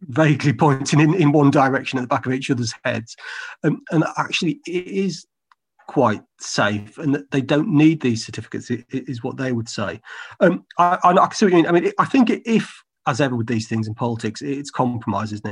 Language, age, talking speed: English, 30-49, 195 wpm